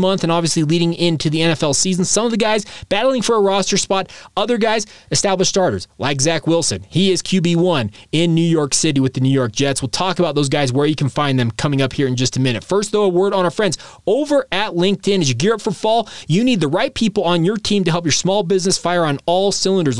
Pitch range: 150-200 Hz